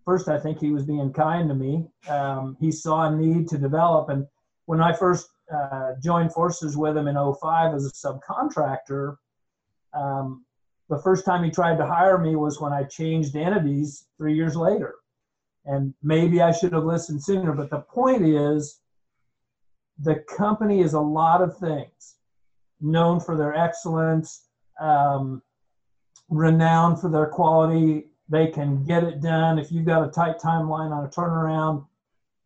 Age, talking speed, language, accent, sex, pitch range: 50-69, 165 wpm, English, American, male, 145-170 Hz